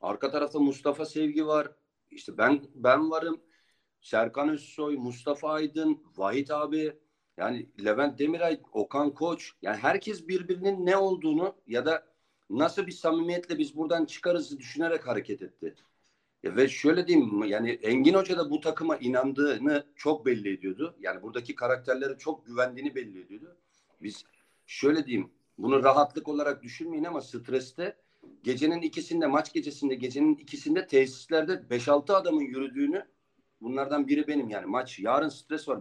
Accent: native